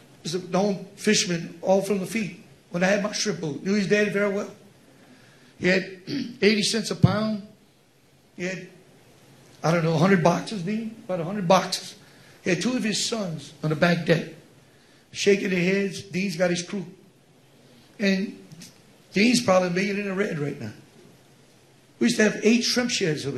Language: English